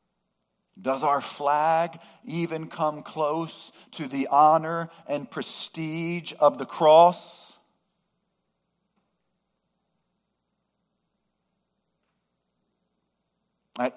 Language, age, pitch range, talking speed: English, 50-69, 125-185 Hz, 65 wpm